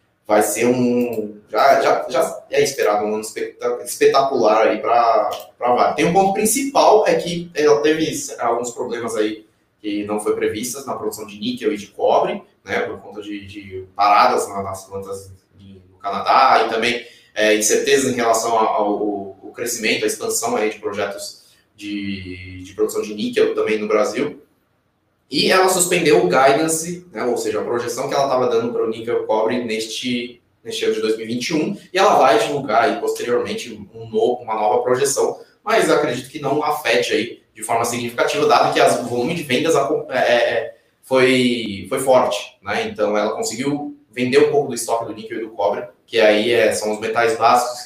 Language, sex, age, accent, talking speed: Portuguese, male, 20-39, Brazilian, 185 wpm